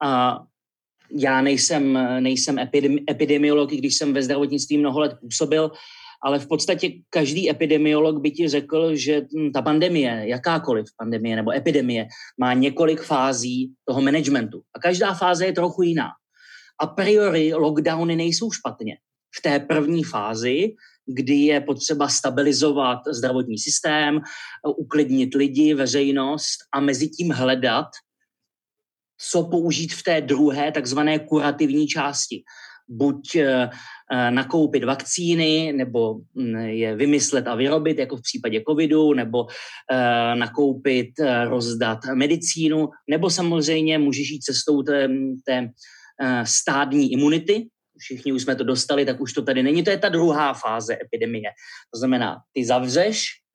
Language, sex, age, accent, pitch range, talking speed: Czech, male, 30-49, native, 130-155 Hz, 125 wpm